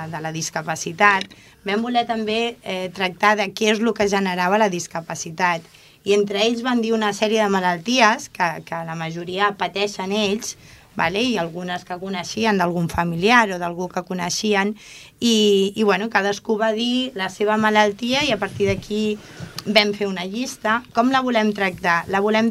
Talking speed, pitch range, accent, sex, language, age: 175 wpm, 175-220 Hz, Spanish, female, Portuguese, 20-39